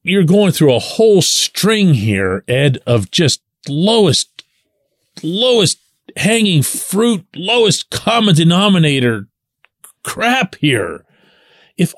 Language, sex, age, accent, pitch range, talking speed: English, male, 40-59, American, 160-210 Hz, 100 wpm